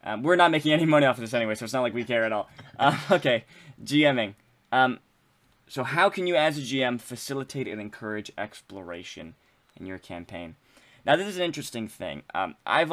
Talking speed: 205 wpm